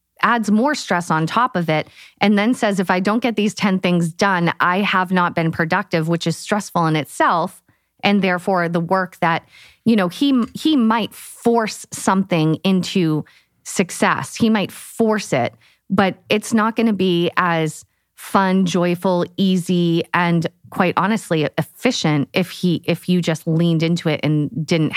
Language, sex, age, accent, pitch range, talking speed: English, female, 30-49, American, 160-195 Hz, 170 wpm